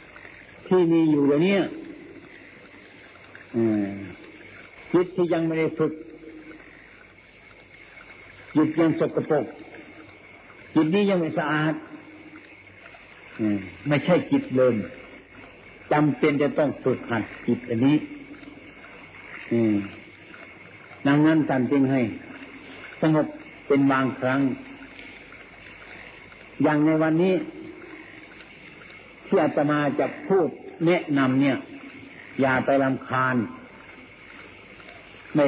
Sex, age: male, 60-79